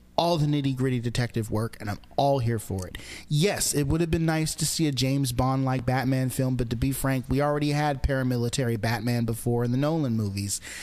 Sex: male